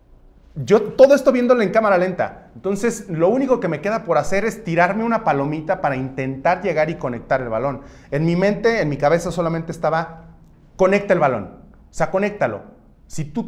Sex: male